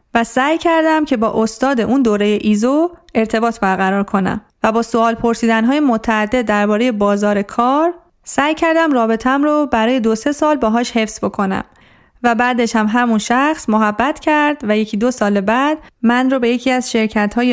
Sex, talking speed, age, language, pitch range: female, 175 wpm, 30-49, Persian, 205-260 Hz